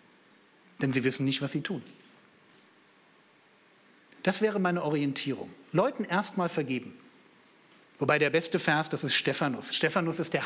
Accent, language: German, German